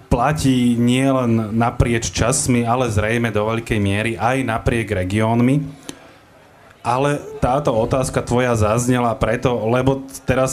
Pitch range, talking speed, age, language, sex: 110-140 Hz, 115 wpm, 20-39, Slovak, male